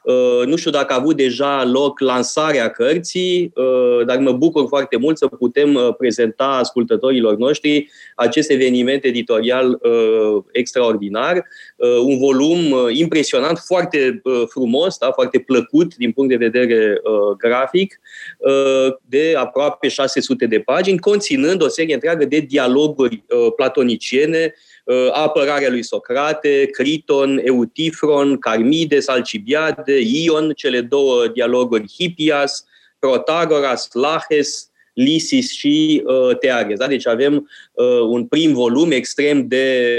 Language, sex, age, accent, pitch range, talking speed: Romanian, male, 20-39, native, 130-205 Hz, 105 wpm